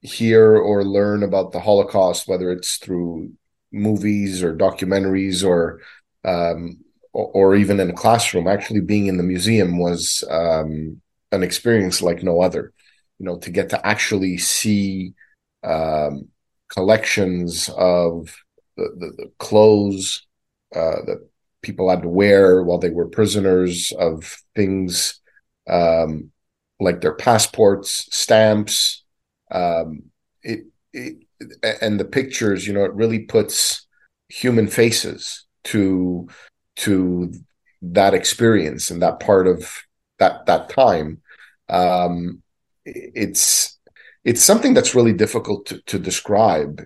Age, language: 30-49, English